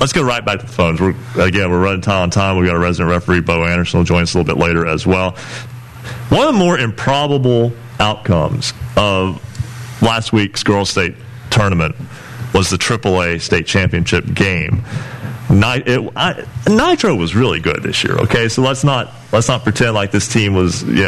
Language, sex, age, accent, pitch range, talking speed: English, male, 40-59, American, 100-125 Hz, 190 wpm